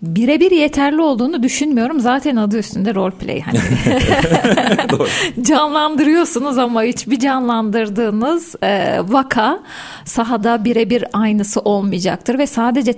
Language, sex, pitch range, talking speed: Turkish, female, 210-265 Hz, 90 wpm